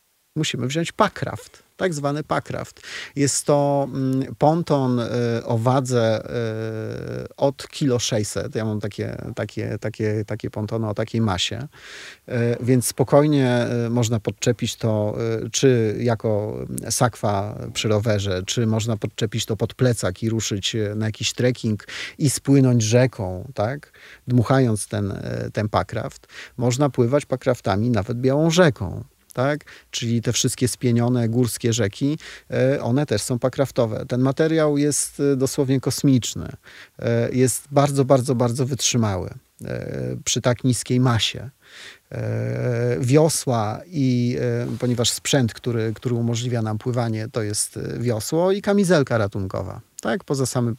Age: 30-49